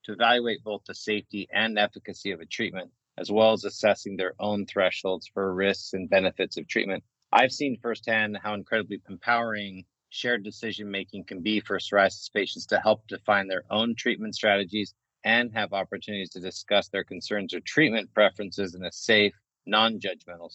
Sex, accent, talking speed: male, American, 165 wpm